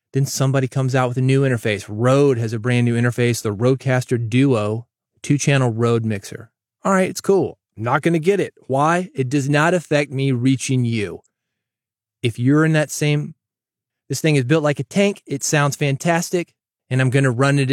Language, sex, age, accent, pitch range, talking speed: English, male, 30-49, American, 120-155 Hz, 190 wpm